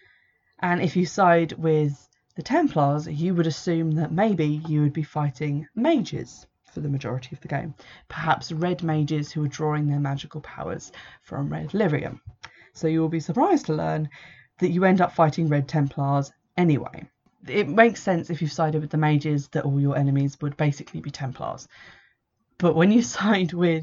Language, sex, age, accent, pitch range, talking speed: English, female, 20-39, British, 150-170 Hz, 180 wpm